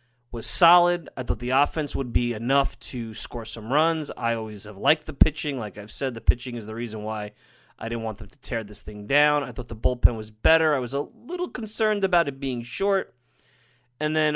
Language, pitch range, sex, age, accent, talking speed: English, 115-140 Hz, male, 30-49, American, 225 wpm